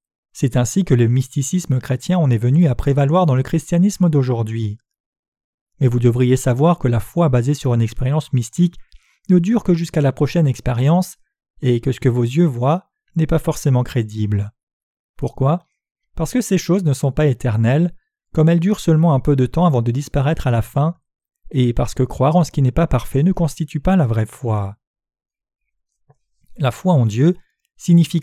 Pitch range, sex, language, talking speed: 125-170 Hz, male, French, 190 wpm